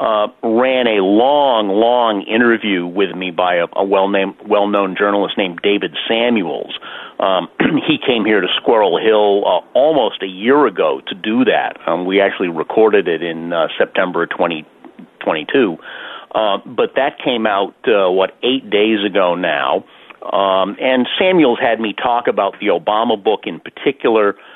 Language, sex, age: English, male, 40-59